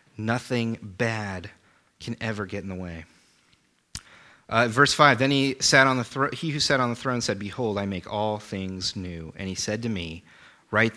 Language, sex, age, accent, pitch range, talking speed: English, male, 30-49, American, 110-135 Hz, 195 wpm